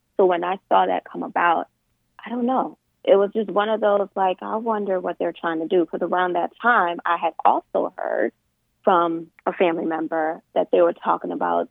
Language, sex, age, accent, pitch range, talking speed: English, female, 20-39, American, 180-240 Hz, 210 wpm